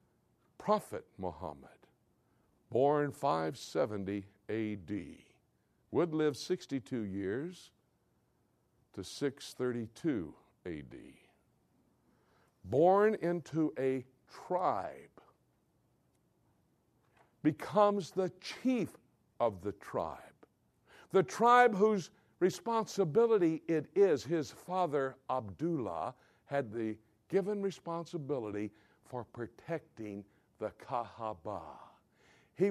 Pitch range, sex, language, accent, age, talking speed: 105-170 Hz, male, English, American, 60-79, 75 wpm